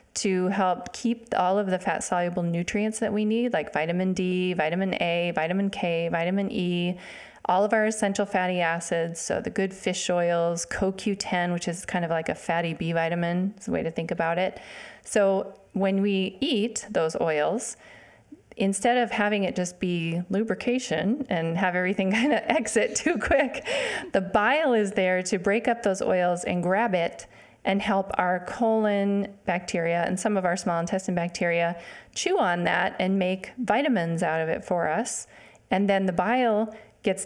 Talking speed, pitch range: 175 wpm, 175-210 Hz